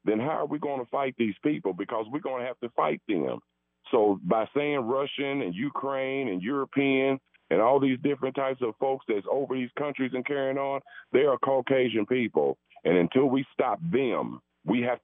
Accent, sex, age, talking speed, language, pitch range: American, male, 40-59, 200 wpm, English, 105-135 Hz